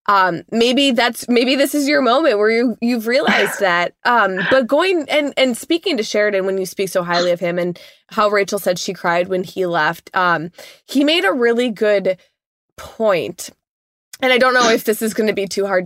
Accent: American